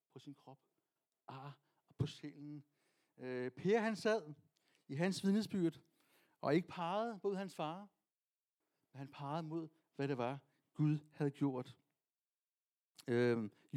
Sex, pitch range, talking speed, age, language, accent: male, 150-220 Hz, 135 wpm, 60-79, Danish, native